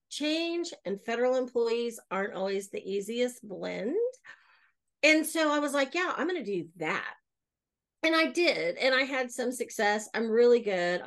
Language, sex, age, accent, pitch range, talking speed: English, female, 40-59, American, 210-290 Hz, 170 wpm